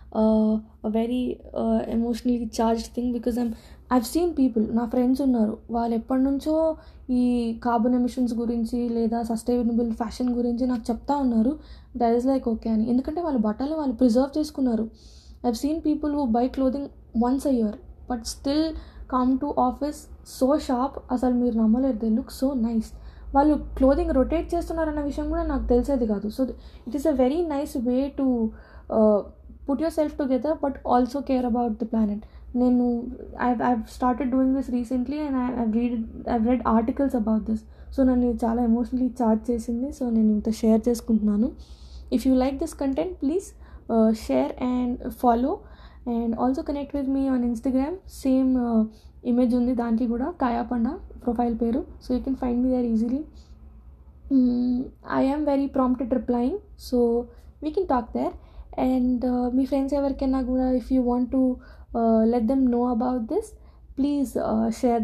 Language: Telugu